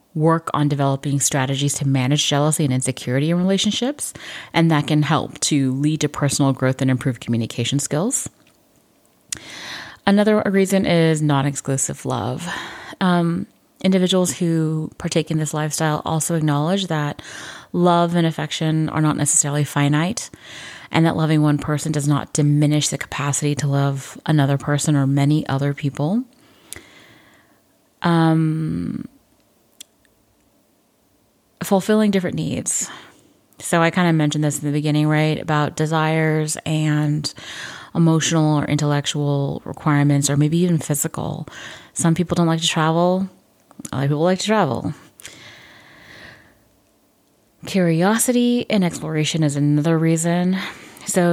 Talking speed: 125 wpm